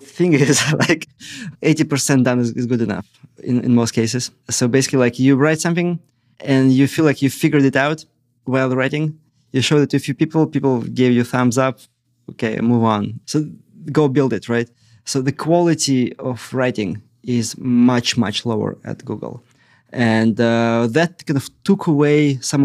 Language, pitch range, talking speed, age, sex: English, 120-140 Hz, 180 wpm, 20-39, male